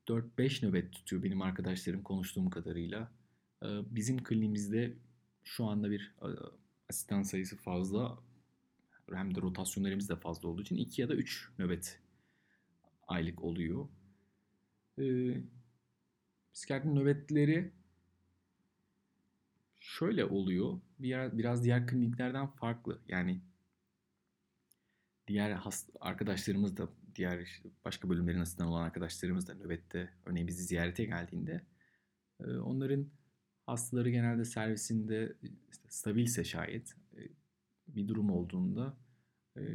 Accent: native